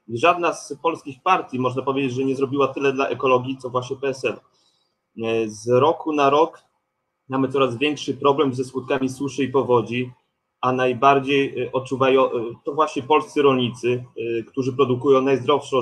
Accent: native